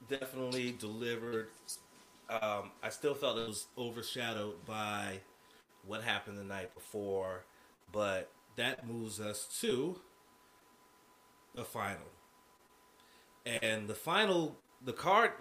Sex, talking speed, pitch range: male, 105 wpm, 110-145 Hz